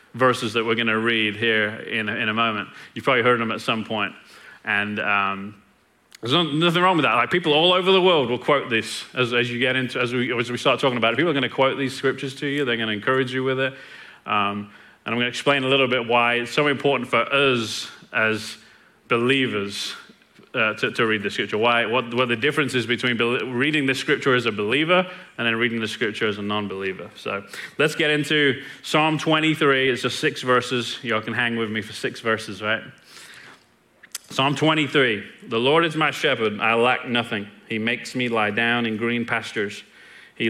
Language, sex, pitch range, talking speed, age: English, male, 115-135 Hz, 215 wpm, 30-49